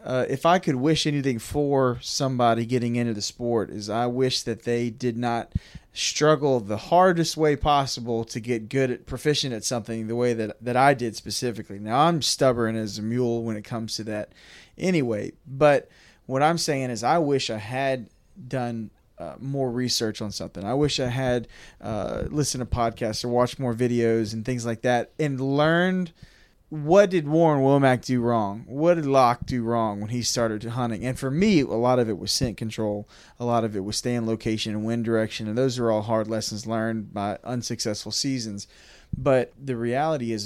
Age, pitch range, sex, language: 20-39, 115-140 Hz, male, English